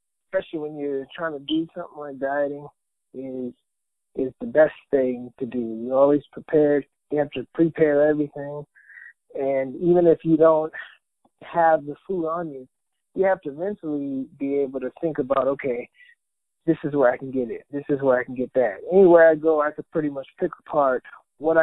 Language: English